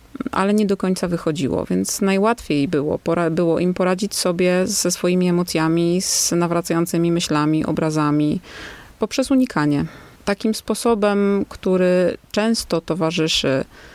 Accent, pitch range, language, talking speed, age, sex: native, 170-215 Hz, Polish, 115 wpm, 30-49, female